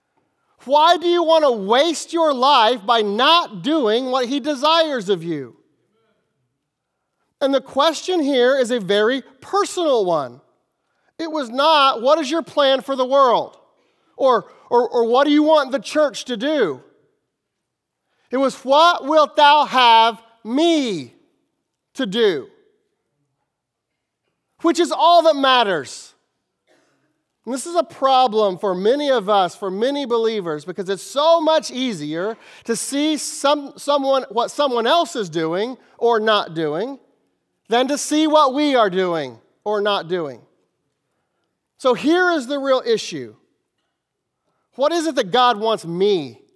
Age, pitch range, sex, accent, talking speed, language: 30-49, 220-305 Hz, male, American, 145 wpm, English